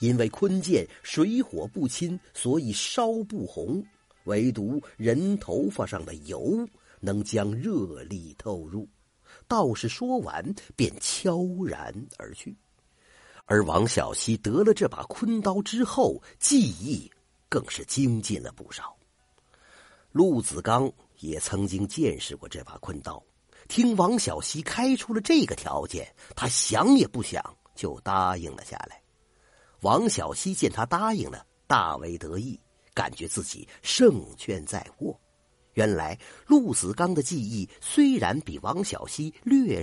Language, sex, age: Chinese, male, 50-69